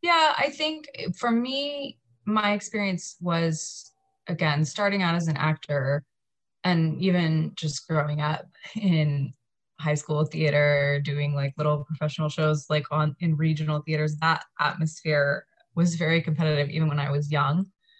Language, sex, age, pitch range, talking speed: English, female, 20-39, 150-175 Hz, 145 wpm